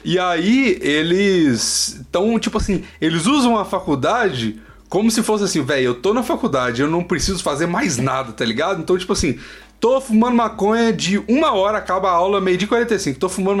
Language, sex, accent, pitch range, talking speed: Portuguese, male, Brazilian, 155-250 Hz, 195 wpm